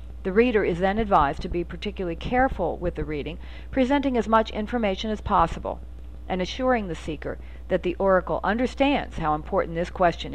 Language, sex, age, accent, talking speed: English, female, 50-69, American, 175 wpm